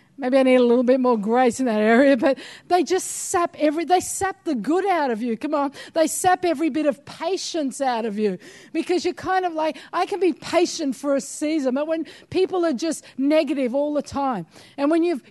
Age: 50-69